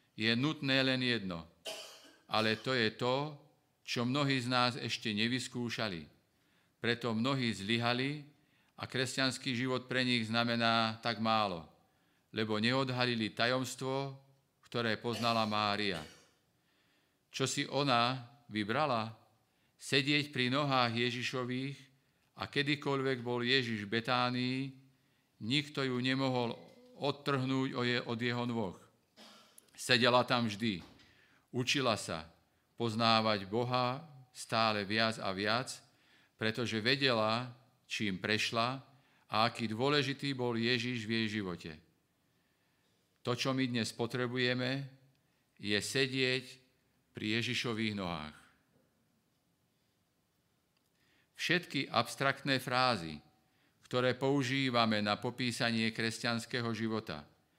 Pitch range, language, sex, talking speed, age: 110-130 Hz, Slovak, male, 95 wpm, 50-69